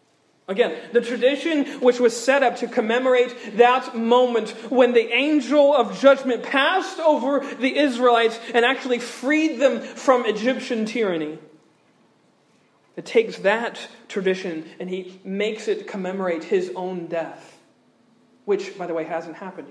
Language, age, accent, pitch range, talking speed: English, 40-59, American, 215-260 Hz, 135 wpm